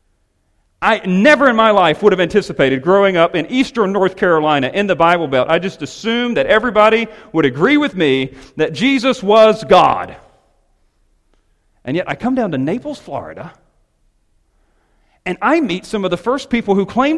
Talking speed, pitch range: 170 wpm, 130-220 Hz